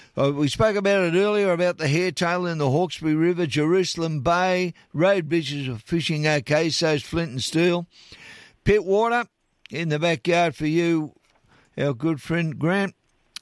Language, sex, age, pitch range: English, male, 50-69, 140-180 Hz